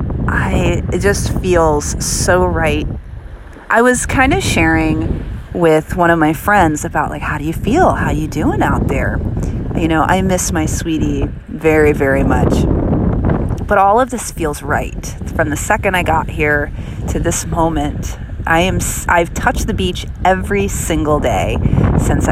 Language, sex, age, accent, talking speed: English, female, 30-49, American, 165 wpm